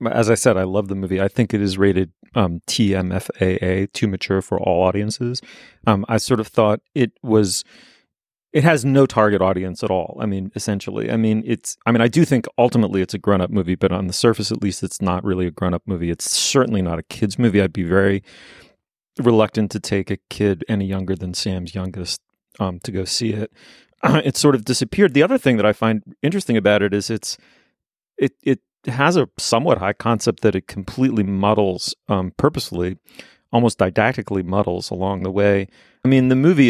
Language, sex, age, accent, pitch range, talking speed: English, male, 30-49, American, 95-115 Hz, 205 wpm